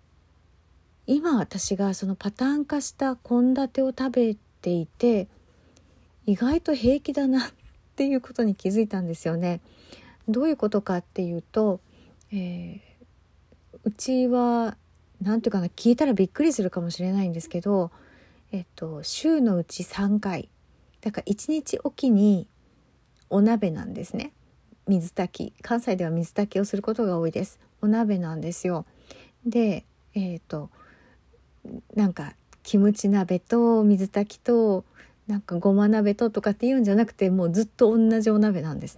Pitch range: 175-230 Hz